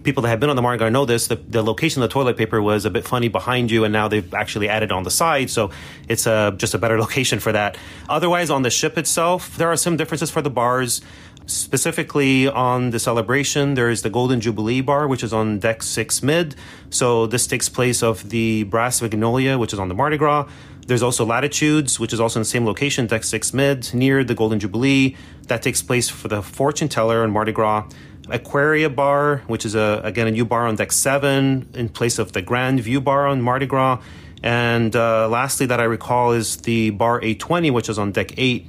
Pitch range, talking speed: 110-140 Hz, 230 wpm